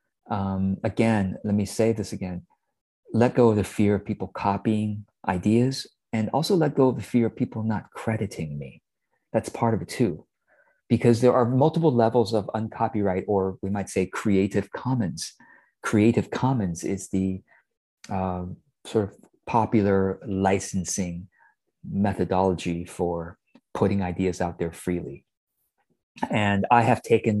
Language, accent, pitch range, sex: English, American, 95-125 Hz, male